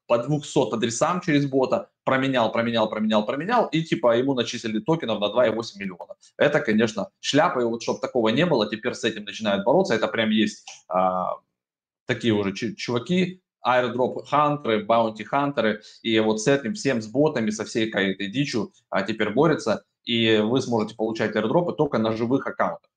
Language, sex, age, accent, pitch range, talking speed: Russian, male, 20-39, native, 110-140 Hz, 170 wpm